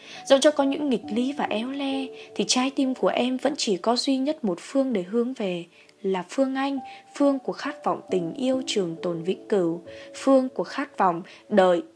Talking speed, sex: 210 wpm, female